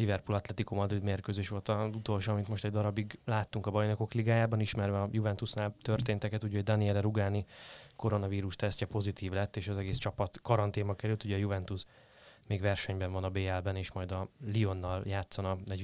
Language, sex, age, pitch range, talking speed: Hungarian, male, 20-39, 95-110 Hz, 175 wpm